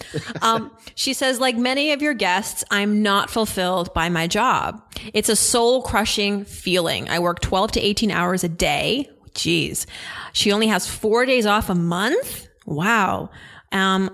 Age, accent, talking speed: 30-49, American, 160 wpm